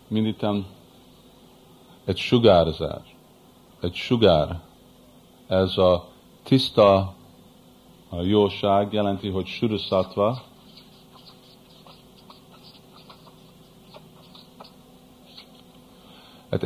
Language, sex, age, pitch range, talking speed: Hungarian, male, 50-69, 85-110 Hz, 45 wpm